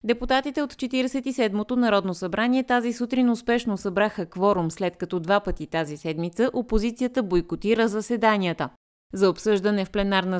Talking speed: 135 wpm